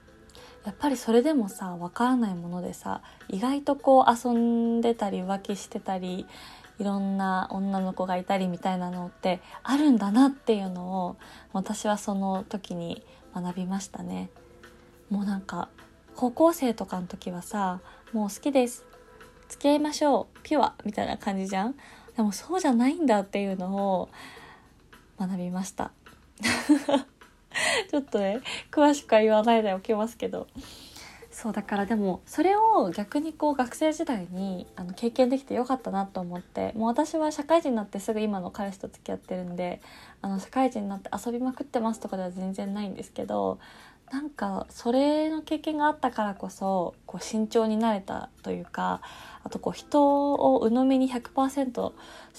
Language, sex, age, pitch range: Japanese, female, 20-39, 190-255 Hz